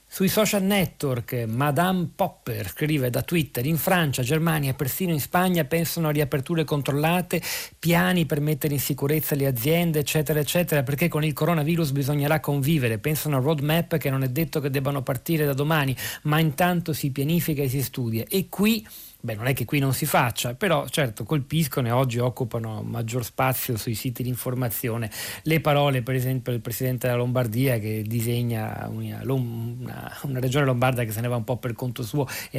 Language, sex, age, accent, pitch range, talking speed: Italian, male, 40-59, native, 125-155 Hz, 180 wpm